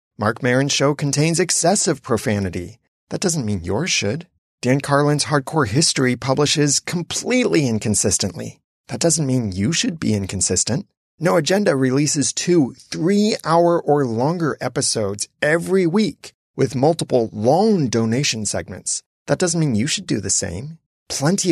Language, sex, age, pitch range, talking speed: English, male, 30-49, 110-165 Hz, 135 wpm